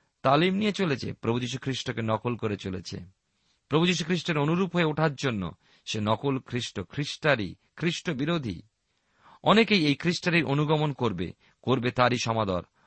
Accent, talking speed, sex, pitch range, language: native, 125 wpm, male, 110-150 Hz, Bengali